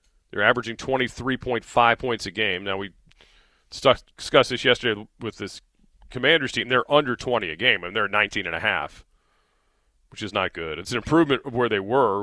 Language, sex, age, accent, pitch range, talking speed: English, male, 40-59, American, 95-125 Hz, 190 wpm